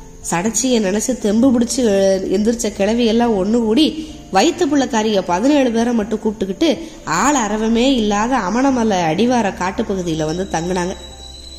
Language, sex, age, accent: Tamil, female, 20-39, native